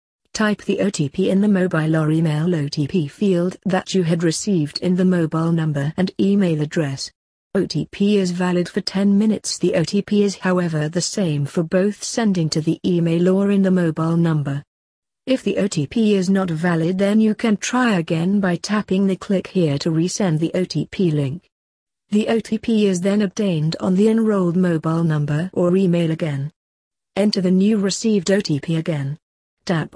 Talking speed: 170 wpm